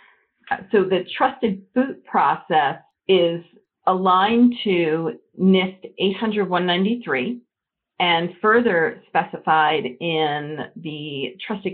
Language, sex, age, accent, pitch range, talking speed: English, female, 50-69, American, 165-215 Hz, 80 wpm